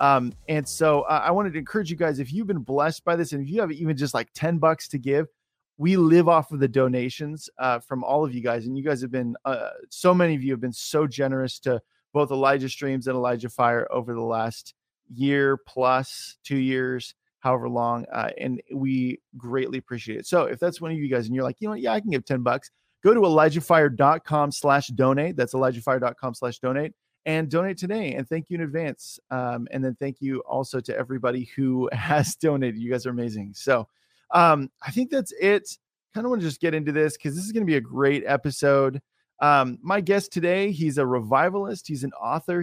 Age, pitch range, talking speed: 30-49, 130-165 Hz, 225 wpm